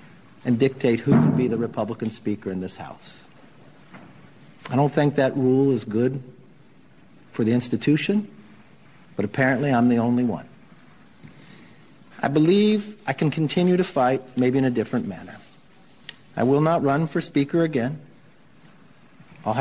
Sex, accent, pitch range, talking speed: male, American, 125-160 Hz, 145 wpm